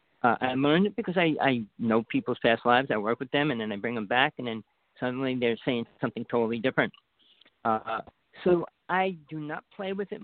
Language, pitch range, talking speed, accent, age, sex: English, 125-160 Hz, 215 wpm, American, 50-69, male